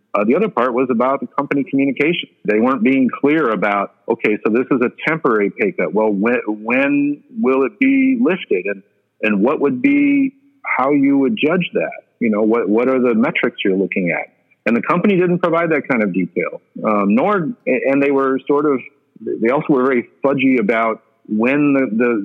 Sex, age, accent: male, 50-69, American